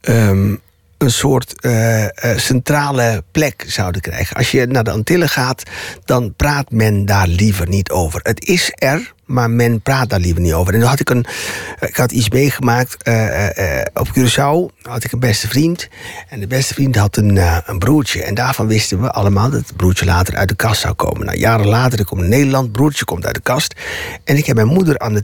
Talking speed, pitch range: 215 wpm, 100-130 Hz